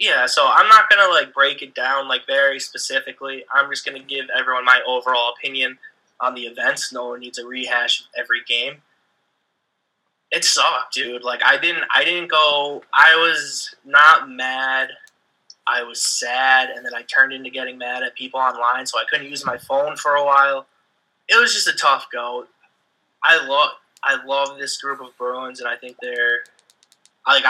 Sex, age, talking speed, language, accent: male, 20-39, 185 wpm, English, American